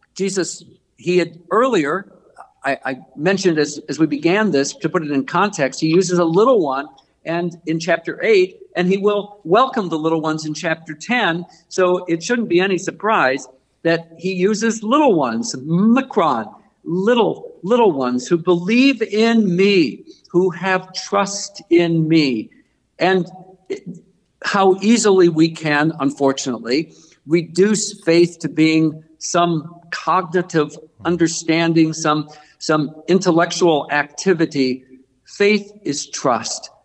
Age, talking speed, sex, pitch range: 50-69, 130 wpm, male, 155-200 Hz